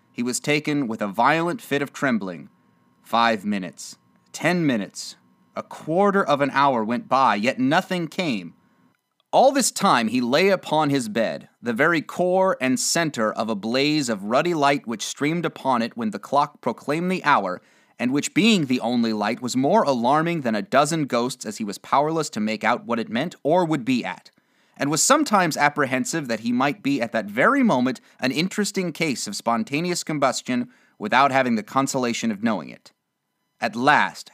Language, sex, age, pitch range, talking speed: English, male, 30-49, 125-195 Hz, 185 wpm